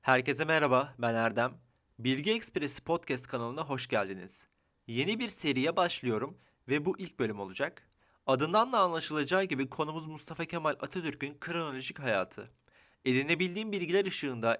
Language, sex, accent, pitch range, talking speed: Turkish, male, native, 125-175 Hz, 135 wpm